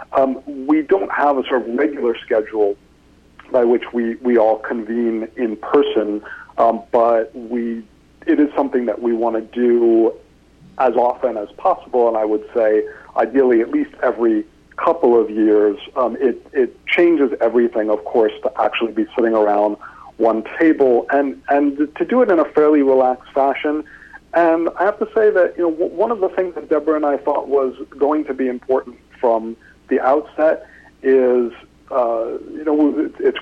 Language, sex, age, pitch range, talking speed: English, male, 50-69, 115-155 Hz, 175 wpm